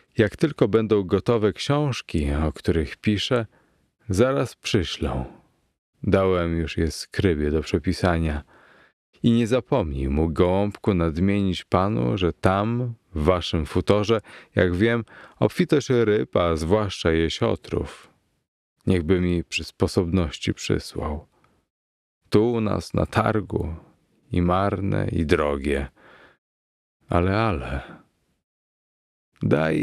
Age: 40-59